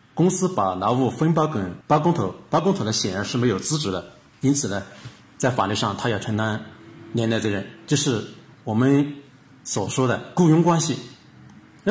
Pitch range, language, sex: 120-195 Hz, Chinese, male